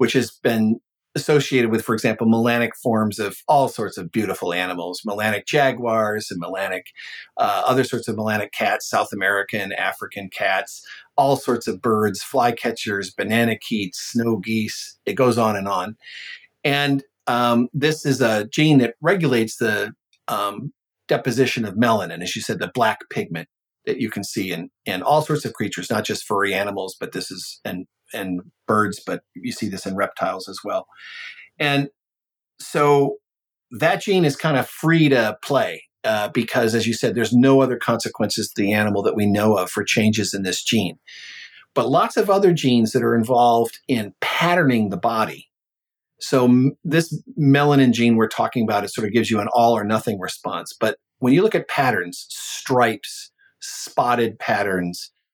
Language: English